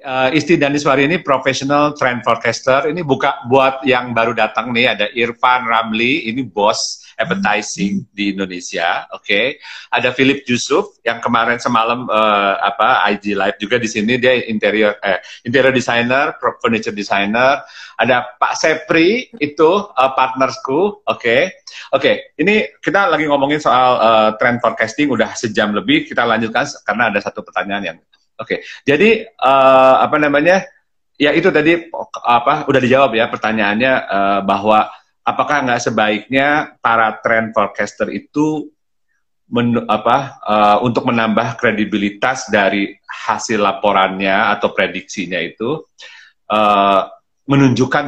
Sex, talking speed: male, 135 wpm